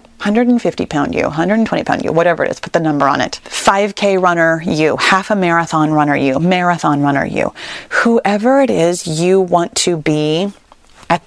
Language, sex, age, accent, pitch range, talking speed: English, female, 30-49, American, 160-240 Hz, 175 wpm